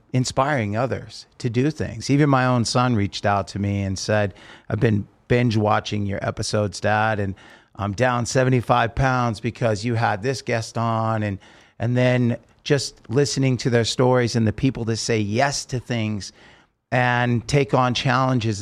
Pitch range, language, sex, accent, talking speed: 105-130 Hz, English, male, American, 170 wpm